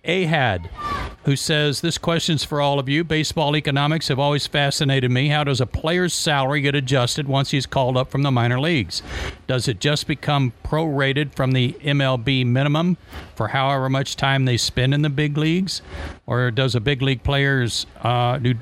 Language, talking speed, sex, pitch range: English, 180 wpm, male, 115-140 Hz